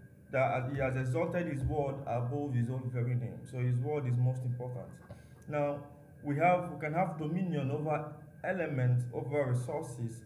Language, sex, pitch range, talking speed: English, male, 125-150 Hz, 165 wpm